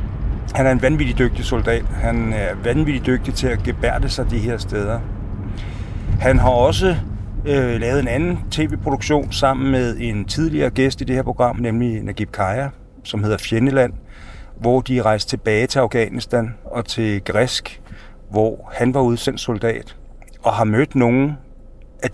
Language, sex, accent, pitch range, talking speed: Danish, male, native, 105-130 Hz, 155 wpm